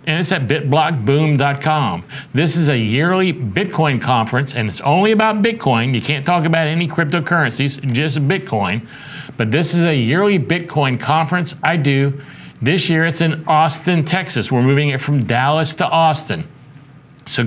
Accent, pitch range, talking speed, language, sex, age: American, 125-155 Hz, 160 wpm, English, male, 60-79